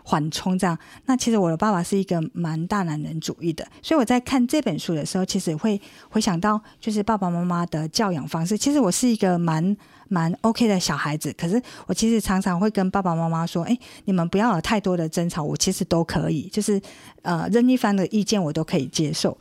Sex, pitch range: female, 170-215 Hz